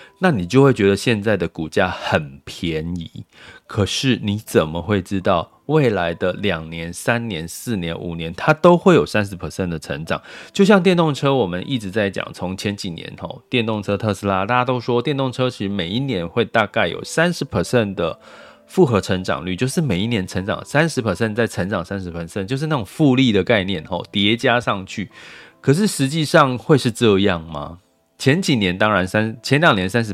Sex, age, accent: male, 30-49, native